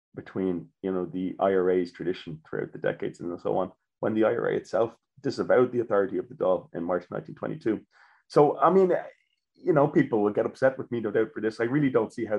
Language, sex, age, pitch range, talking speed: English, male, 30-49, 90-115 Hz, 220 wpm